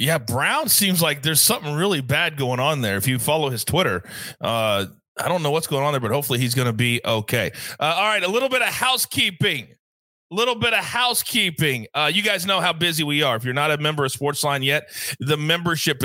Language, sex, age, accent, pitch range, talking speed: English, male, 30-49, American, 135-195 Hz, 230 wpm